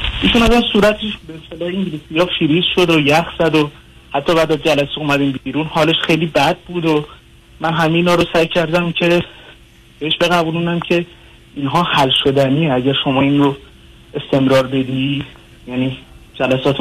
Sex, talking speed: male, 145 wpm